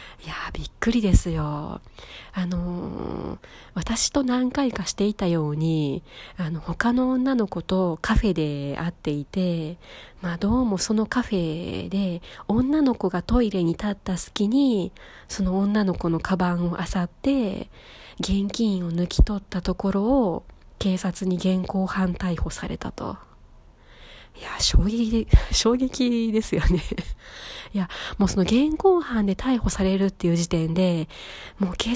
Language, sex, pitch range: Japanese, female, 175-225 Hz